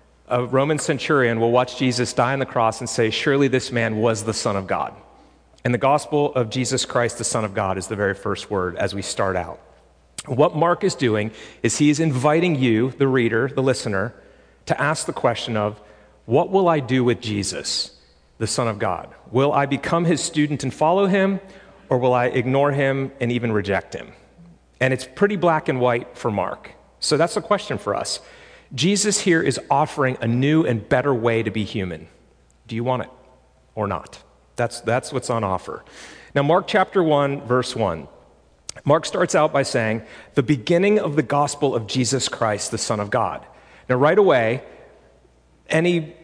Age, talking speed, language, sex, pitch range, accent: 40-59, 190 wpm, English, male, 115-155 Hz, American